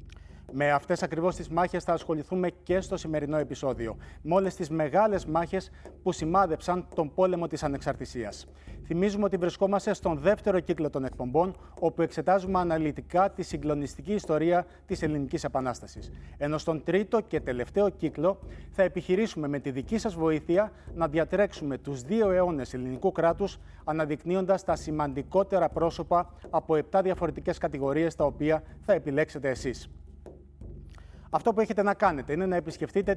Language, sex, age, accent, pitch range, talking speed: Greek, male, 30-49, native, 145-190 Hz, 125 wpm